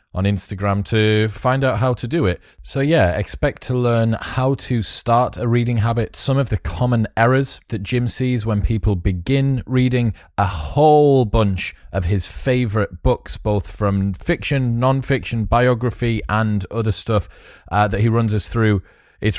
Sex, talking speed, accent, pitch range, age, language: male, 165 wpm, British, 95-120 Hz, 30-49, English